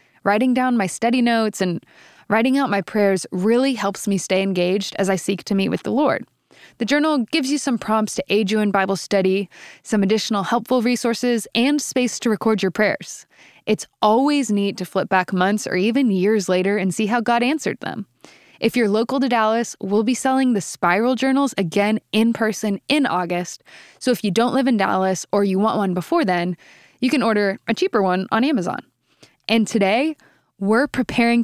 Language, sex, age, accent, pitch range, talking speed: English, female, 10-29, American, 195-245 Hz, 195 wpm